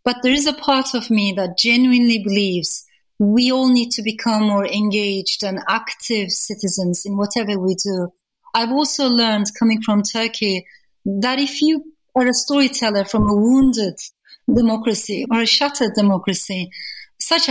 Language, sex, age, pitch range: English, female, 30-49, 200-250 Hz